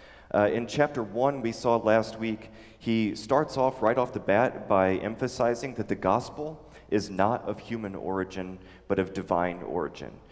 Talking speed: 170 wpm